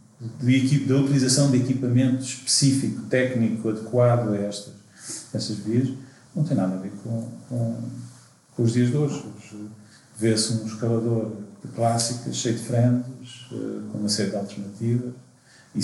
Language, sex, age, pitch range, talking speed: Portuguese, male, 40-59, 110-130 Hz, 140 wpm